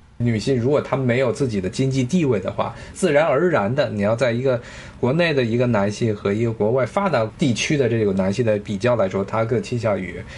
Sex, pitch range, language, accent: male, 110-140 Hz, Chinese, native